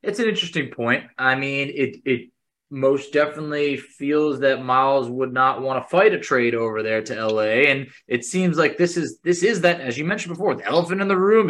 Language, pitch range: English, 130-175 Hz